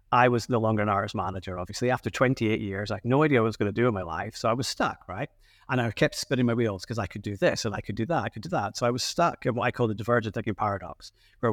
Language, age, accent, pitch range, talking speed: English, 30-49, British, 105-125 Hz, 325 wpm